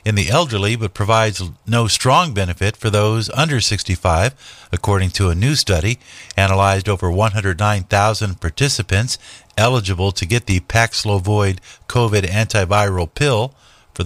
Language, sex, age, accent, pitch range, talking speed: English, male, 50-69, American, 95-120 Hz, 130 wpm